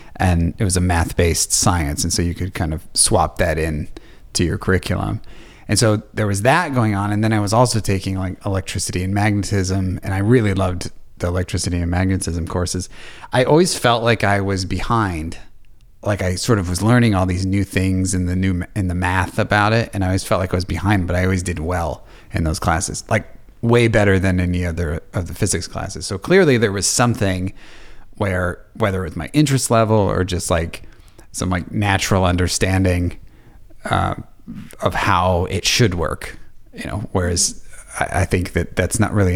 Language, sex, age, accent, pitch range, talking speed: English, male, 30-49, American, 90-105 Hz, 195 wpm